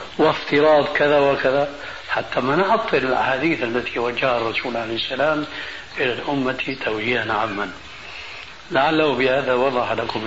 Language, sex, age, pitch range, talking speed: Arabic, male, 60-79, 120-140 Hz, 115 wpm